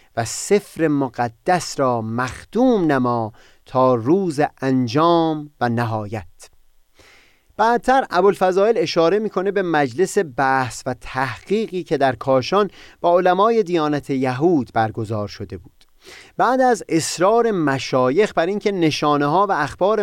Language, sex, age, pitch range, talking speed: Persian, male, 30-49, 125-185 Hz, 125 wpm